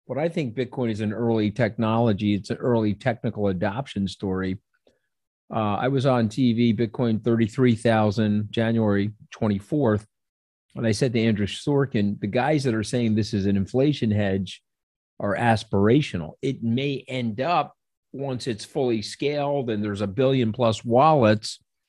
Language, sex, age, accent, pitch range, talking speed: English, male, 40-59, American, 105-130 Hz, 150 wpm